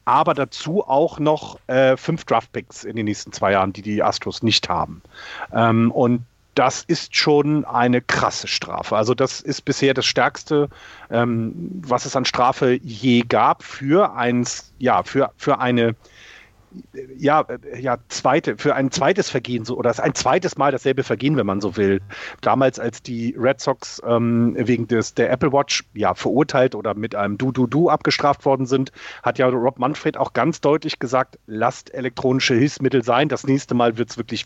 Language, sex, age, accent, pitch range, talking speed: German, male, 40-59, German, 120-145 Hz, 180 wpm